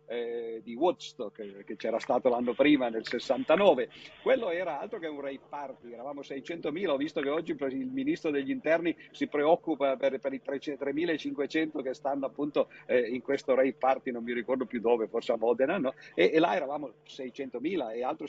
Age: 50-69